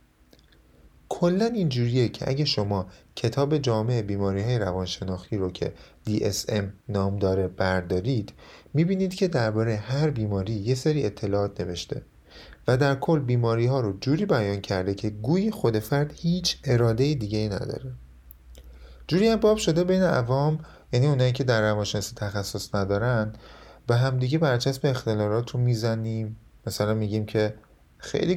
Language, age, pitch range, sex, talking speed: Persian, 30-49, 100-140 Hz, male, 135 wpm